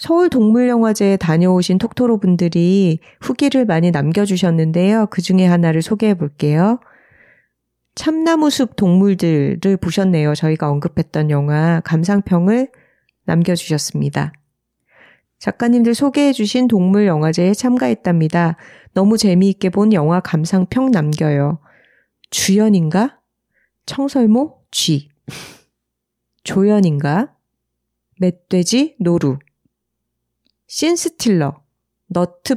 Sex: female